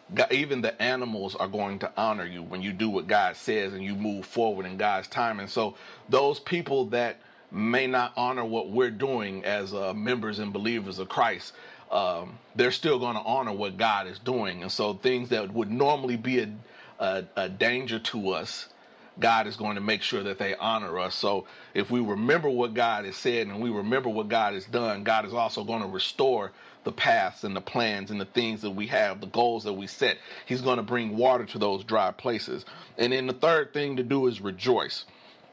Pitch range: 105-130 Hz